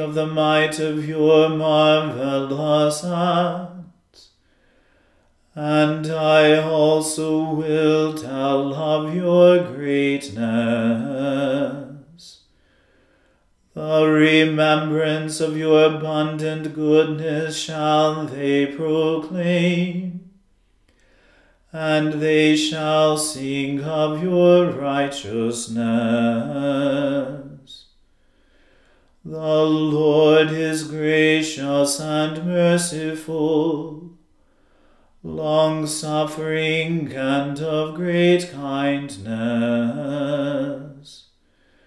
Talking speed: 60 wpm